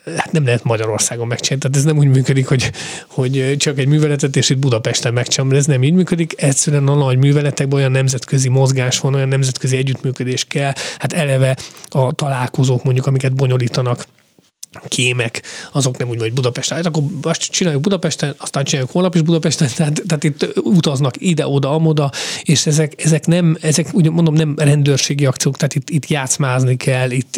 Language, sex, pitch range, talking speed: Hungarian, male, 130-155 Hz, 180 wpm